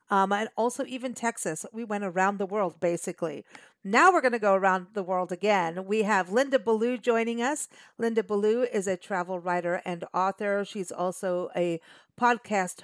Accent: American